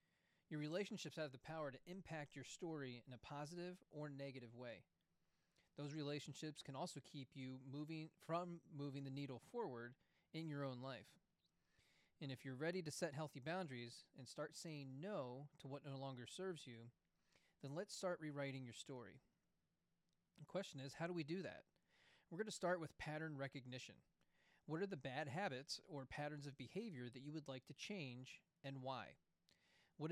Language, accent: English, American